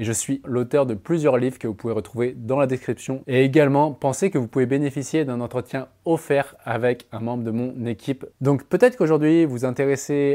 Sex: male